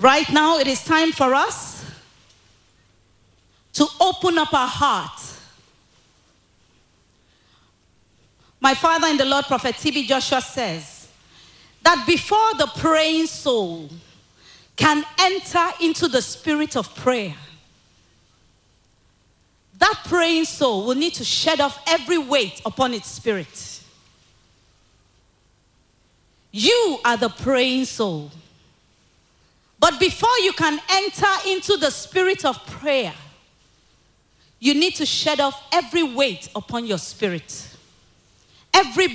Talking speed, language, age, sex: 110 wpm, English, 40-59, female